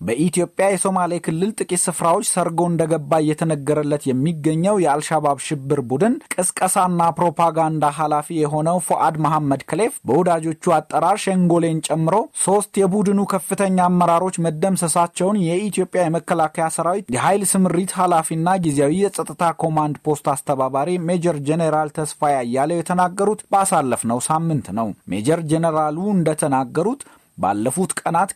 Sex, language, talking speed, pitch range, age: male, Amharic, 110 wpm, 155-180 Hz, 30-49